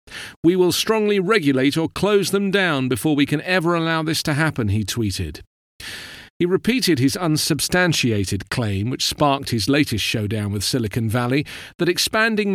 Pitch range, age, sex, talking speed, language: 120-170 Hz, 40-59, male, 160 wpm, English